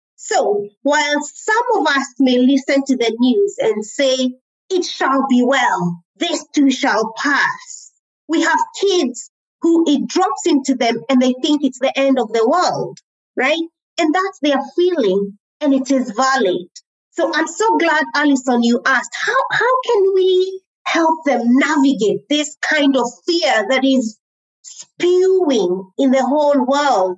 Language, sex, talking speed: English, female, 155 wpm